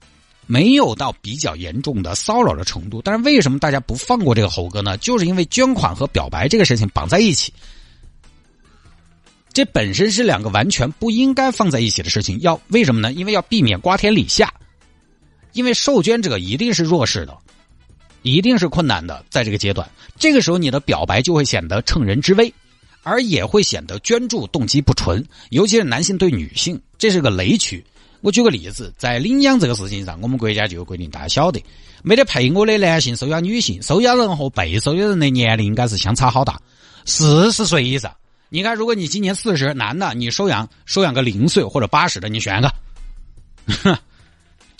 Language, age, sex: Chinese, 50-69, male